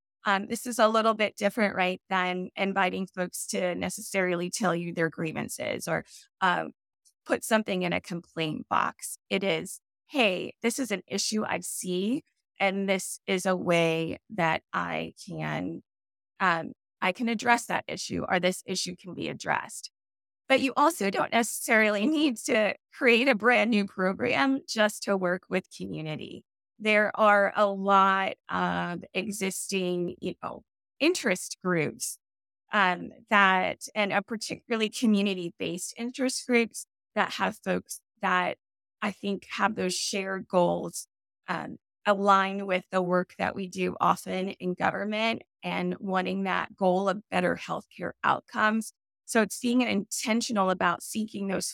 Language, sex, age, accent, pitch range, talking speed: English, female, 20-39, American, 180-220 Hz, 145 wpm